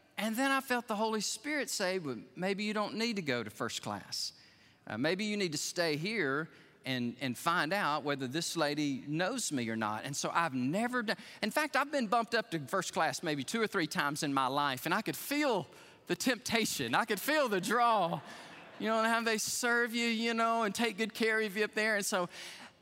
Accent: American